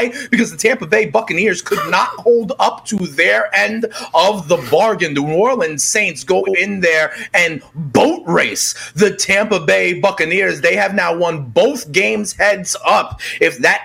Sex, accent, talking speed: male, American, 170 wpm